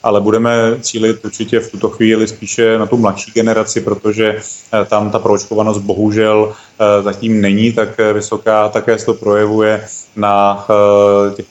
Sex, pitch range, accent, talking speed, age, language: male, 100-110 Hz, native, 140 wpm, 30-49, Czech